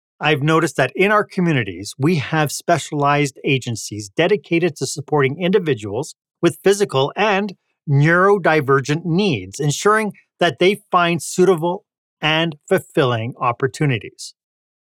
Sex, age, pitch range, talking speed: male, 40-59, 125-175 Hz, 110 wpm